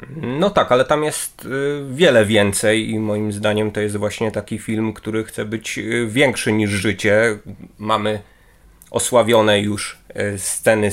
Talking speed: 135 wpm